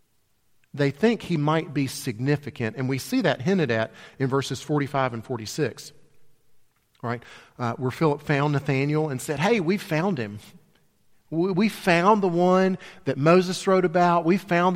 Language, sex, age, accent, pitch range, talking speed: English, male, 40-59, American, 115-150 Hz, 160 wpm